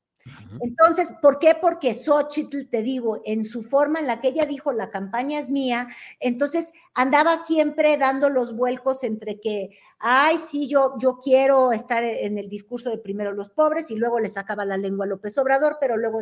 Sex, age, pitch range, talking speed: female, 50-69, 225-295 Hz, 190 wpm